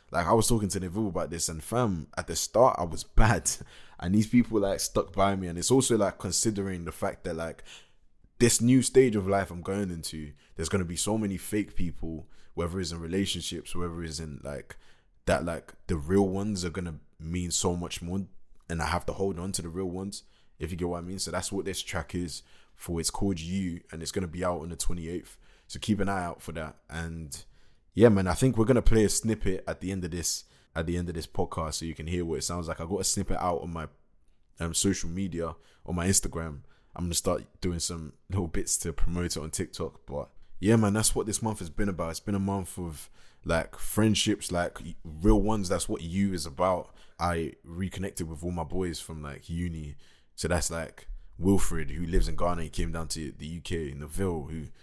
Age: 20-39